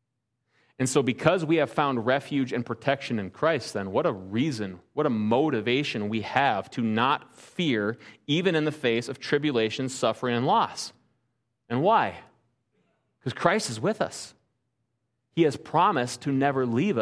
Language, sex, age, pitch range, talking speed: English, male, 30-49, 120-140 Hz, 160 wpm